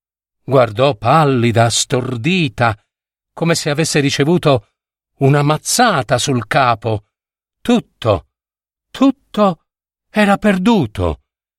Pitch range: 110-150 Hz